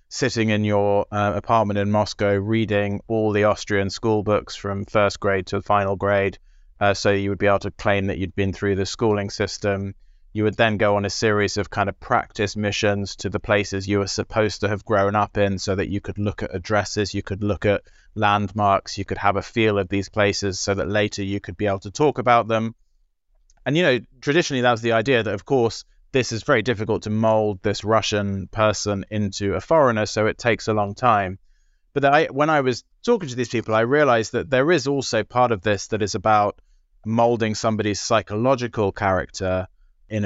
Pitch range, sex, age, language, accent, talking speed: 100-115 Hz, male, 20-39, English, British, 215 wpm